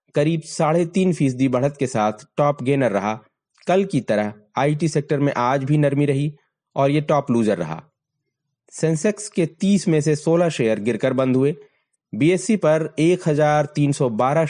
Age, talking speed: 30-49, 175 wpm